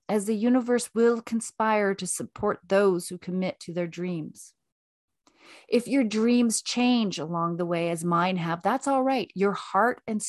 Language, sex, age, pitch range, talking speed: English, female, 30-49, 160-215 Hz, 170 wpm